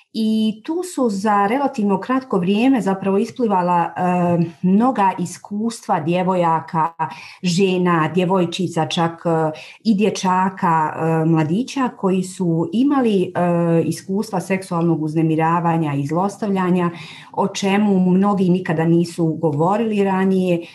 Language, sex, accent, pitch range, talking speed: Croatian, female, native, 170-200 Hz, 105 wpm